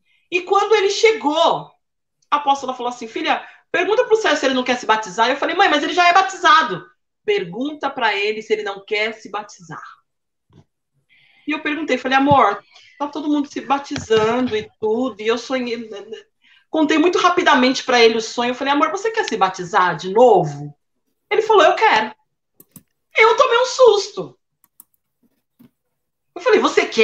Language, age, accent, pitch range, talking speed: Portuguese, 40-59, Brazilian, 210-320 Hz, 175 wpm